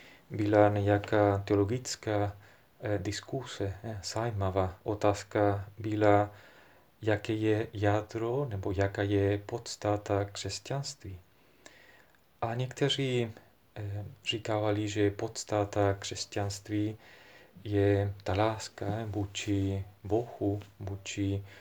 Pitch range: 100-115 Hz